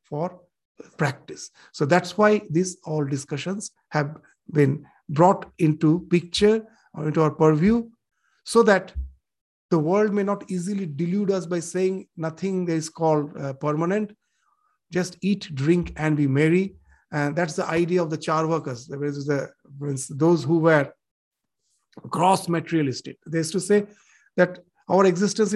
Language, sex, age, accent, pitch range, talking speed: English, male, 50-69, Indian, 160-200 Hz, 150 wpm